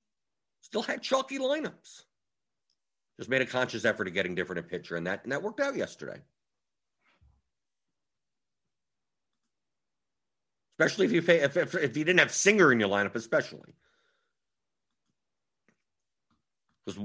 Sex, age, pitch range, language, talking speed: male, 50-69, 120-170 Hz, English, 130 wpm